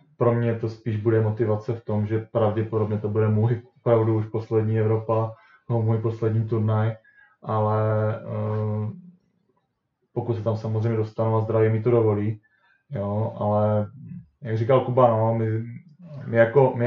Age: 20-39